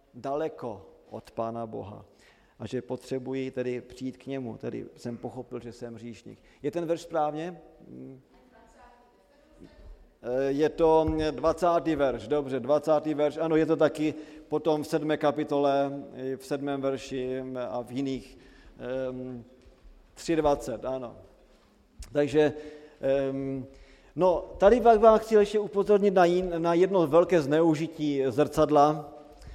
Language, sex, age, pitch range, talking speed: Slovak, male, 40-59, 130-155 Hz, 115 wpm